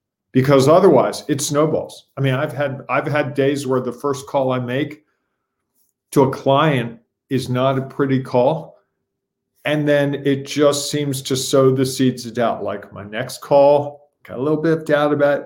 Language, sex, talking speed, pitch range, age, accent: English, male, 180 wpm, 125-145 Hz, 50-69, American